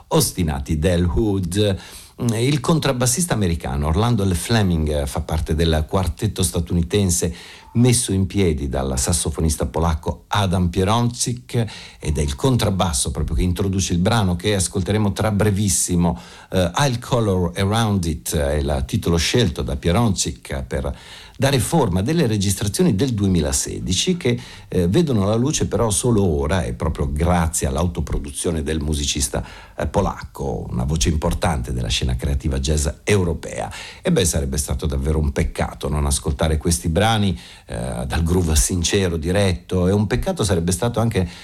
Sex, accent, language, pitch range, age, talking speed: male, native, Italian, 80-110 Hz, 50-69, 140 wpm